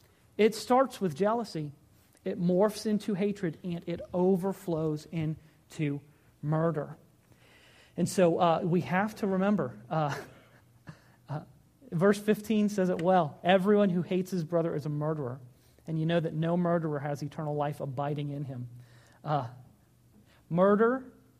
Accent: American